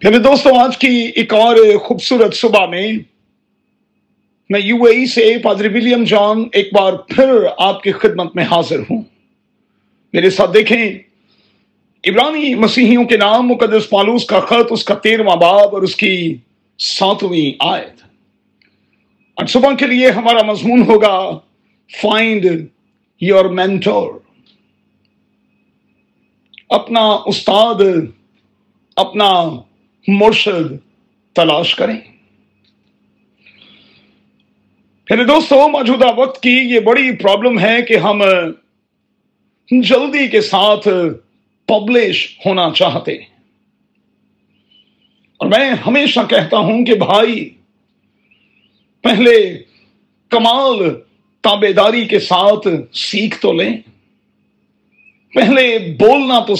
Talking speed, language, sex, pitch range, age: 100 wpm, Urdu, male, 200-240 Hz, 50-69